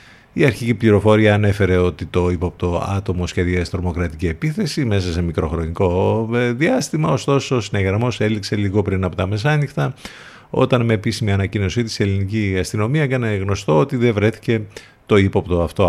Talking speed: 145 wpm